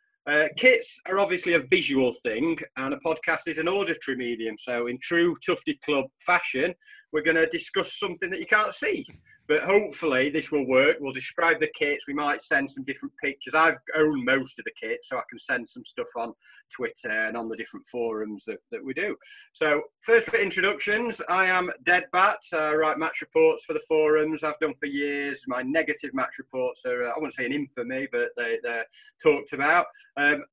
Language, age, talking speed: English, 30-49, 205 wpm